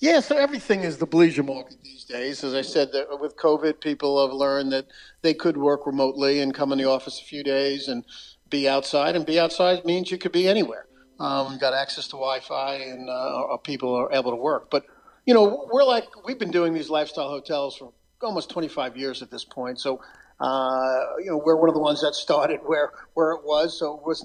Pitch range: 135-155 Hz